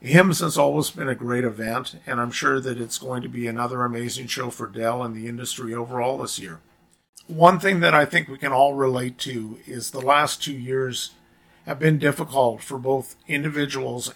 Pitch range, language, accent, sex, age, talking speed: 120-145 Hz, English, American, male, 50-69, 200 wpm